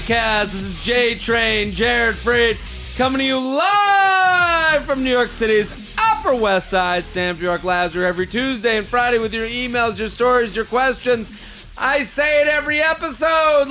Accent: American